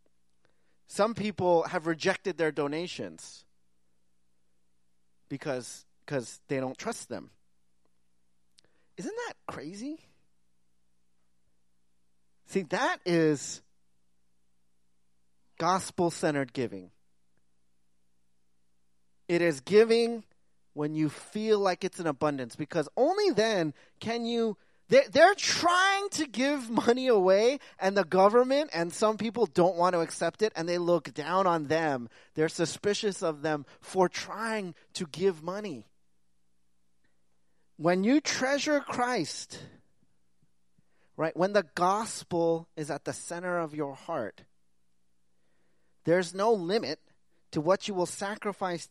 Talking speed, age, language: 110 wpm, 30-49, English